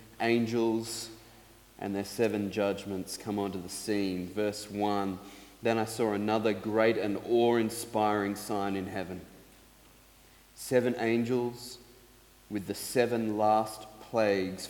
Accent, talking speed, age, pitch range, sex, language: Australian, 115 wpm, 30-49, 105-120 Hz, male, English